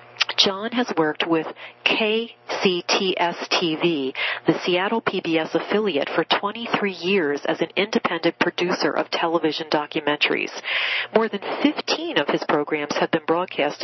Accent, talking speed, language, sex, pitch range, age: American, 120 wpm, English, female, 160-205 Hz, 40-59